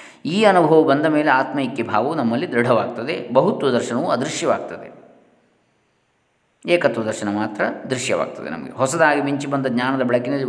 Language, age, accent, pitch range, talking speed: Kannada, 20-39, native, 120-150 Hz, 120 wpm